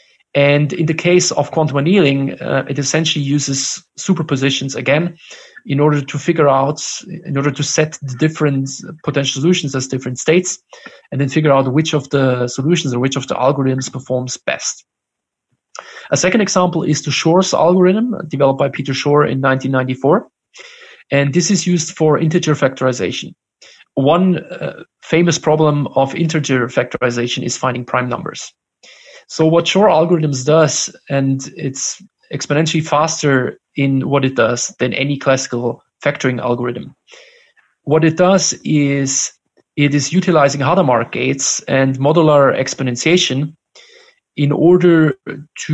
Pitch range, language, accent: 135-165 Hz, English, German